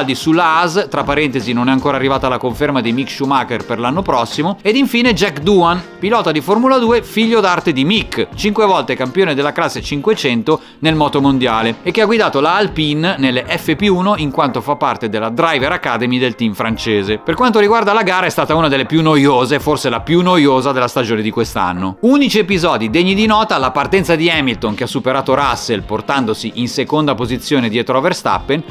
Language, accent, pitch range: Italian, native, 130-195 Hz